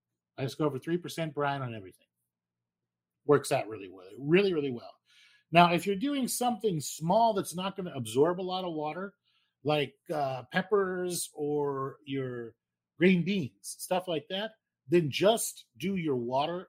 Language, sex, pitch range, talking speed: English, male, 125-175 Hz, 160 wpm